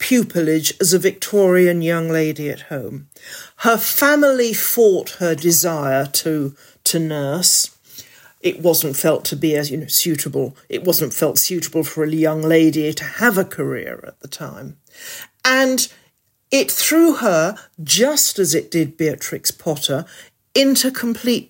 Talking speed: 145 wpm